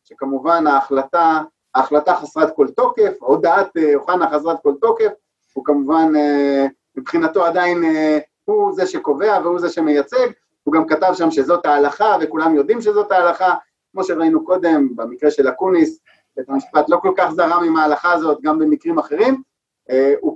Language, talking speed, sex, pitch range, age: Hebrew, 145 wpm, male, 155-245 Hz, 30-49